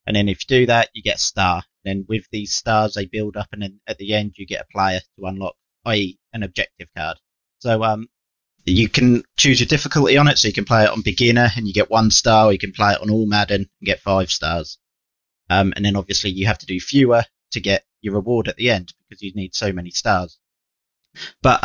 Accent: British